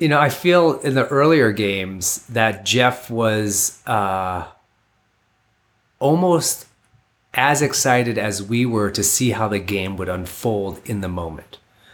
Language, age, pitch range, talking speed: English, 30-49, 100-120 Hz, 140 wpm